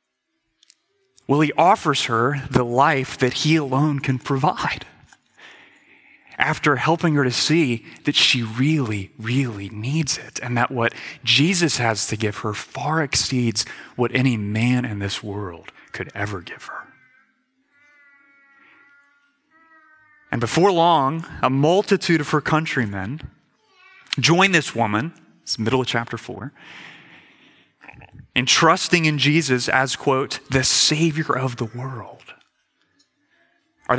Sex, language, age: male, English, 30-49